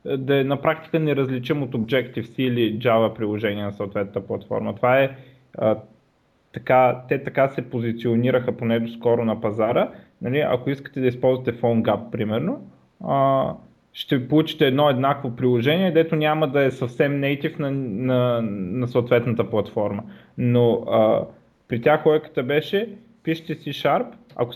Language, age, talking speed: Bulgarian, 30-49, 145 wpm